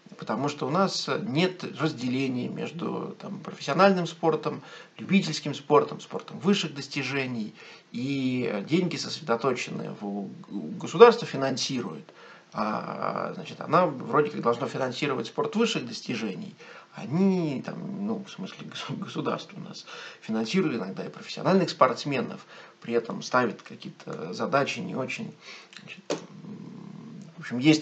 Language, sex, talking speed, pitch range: Russian, male, 115 wpm, 125-195 Hz